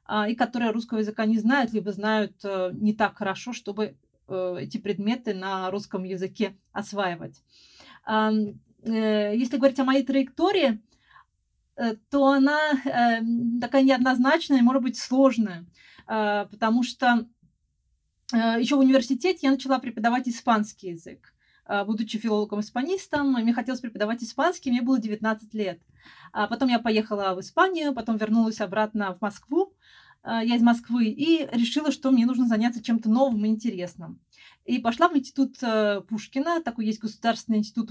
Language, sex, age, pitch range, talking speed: Russian, female, 30-49, 210-255 Hz, 130 wpm